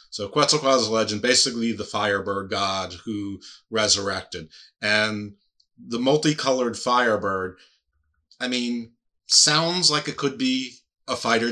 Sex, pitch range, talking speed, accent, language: male, 100-120 Hz, 125 wpm, American, English